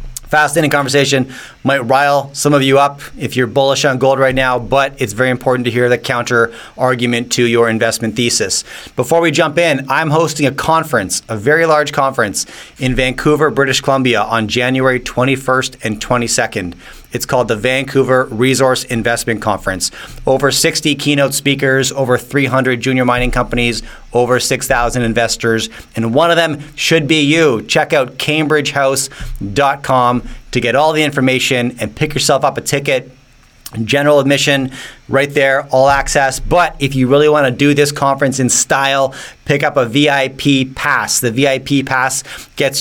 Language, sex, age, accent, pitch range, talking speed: English, male, 30-49, American, 125-140 Hz, 160 wpm